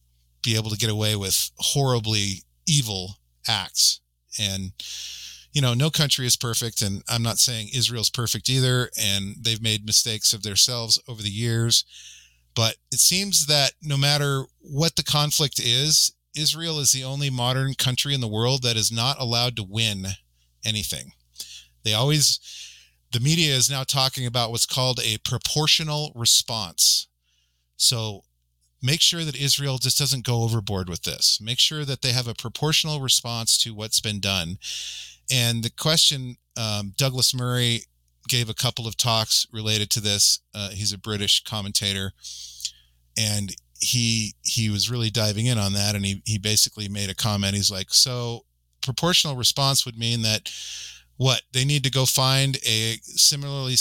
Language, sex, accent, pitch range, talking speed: English, male, American, 100-130 Hz, 160 wpm